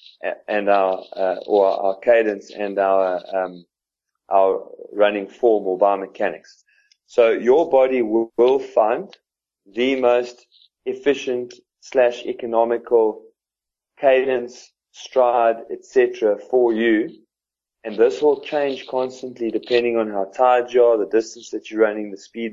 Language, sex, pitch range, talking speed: English, male, 105-130 Hz, 130 wpm